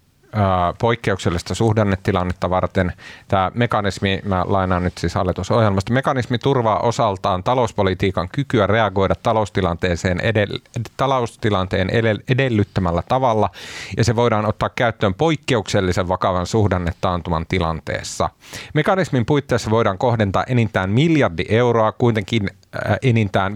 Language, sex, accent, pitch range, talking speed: Finnish, male, native, 95-130 Hz, 100 wpm